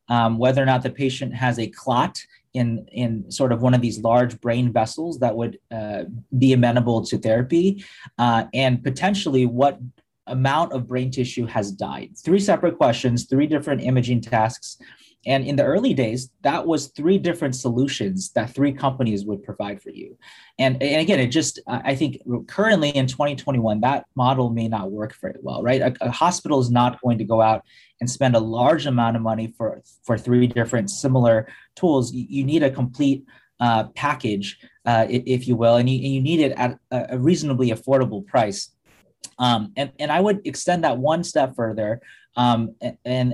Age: 30-49